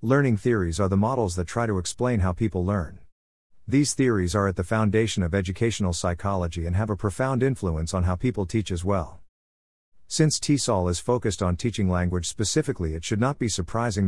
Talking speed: 190 wpm